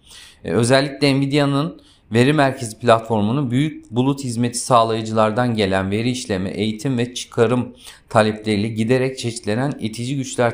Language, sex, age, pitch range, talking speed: Turkish, male, 40-59, 105-130 Hz, 115 wpm